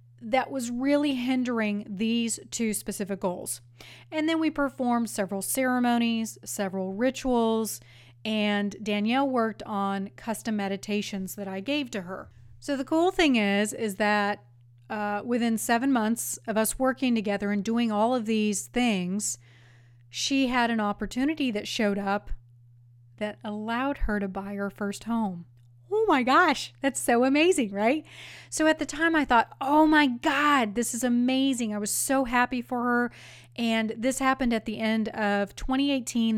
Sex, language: female, English